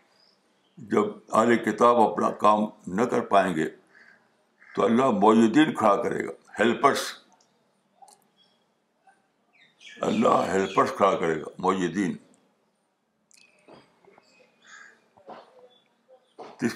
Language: Urdu